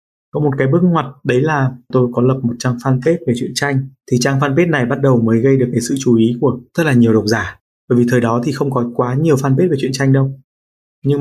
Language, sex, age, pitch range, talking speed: Vietnamese, male, 20-39, 120-140 Hz, 270 wpm